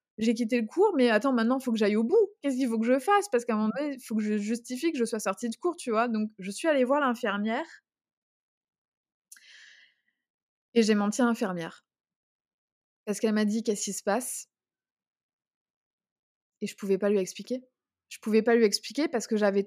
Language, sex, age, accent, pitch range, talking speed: French, female, 20-39, French, 205-240 Hz, 220 wpm